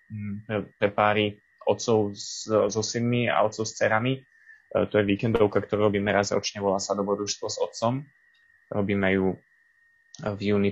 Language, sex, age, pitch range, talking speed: Slovak, male, 20-39, 95-105 Hz, 145 wpm